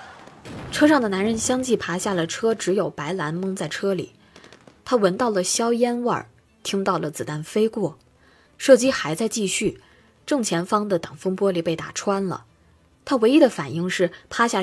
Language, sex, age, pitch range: Chinese, female, 20-39, 165-220 Hz